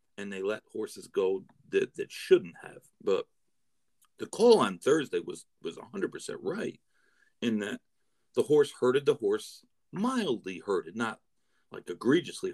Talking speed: 145 wpm